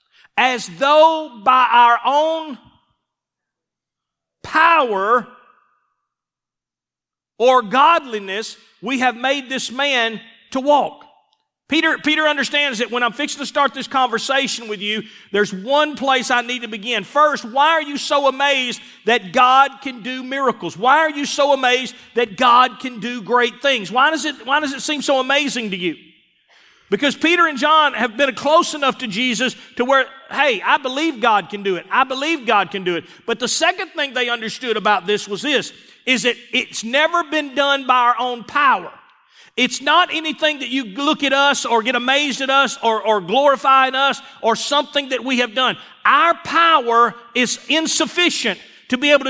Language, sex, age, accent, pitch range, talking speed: English, male, 40-59, American, 240-290 Hz, 175 wpm